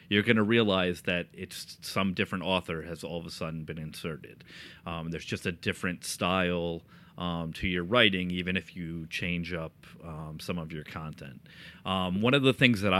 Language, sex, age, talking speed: English, male, 30-49, 195 wpm